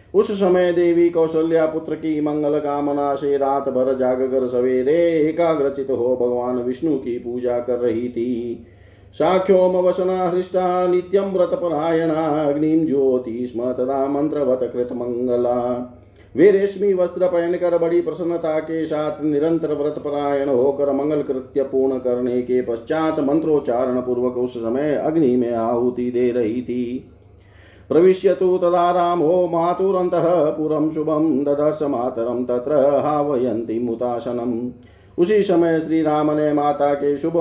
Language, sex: Hindi, male